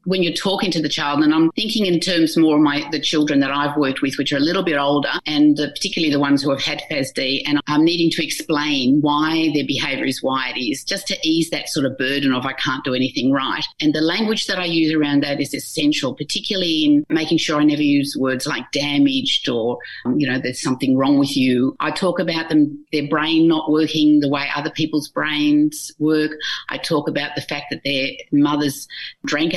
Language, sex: English, female